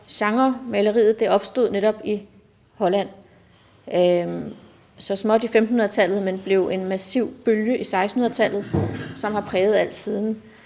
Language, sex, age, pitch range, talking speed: Danish, female, 30-49, 195-230 Hz, 130 wpm